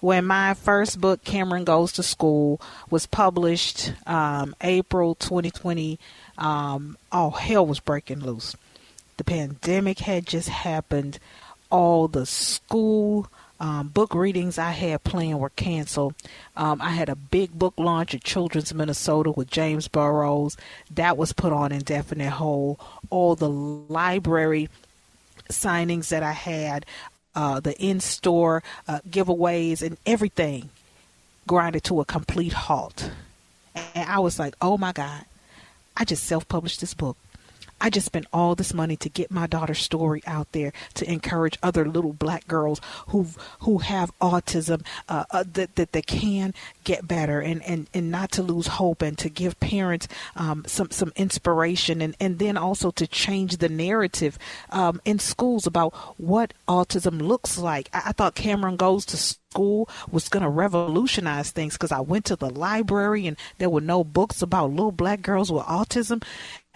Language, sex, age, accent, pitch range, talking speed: English, female, 40-59, American, 155-185 Hz, 160 wpm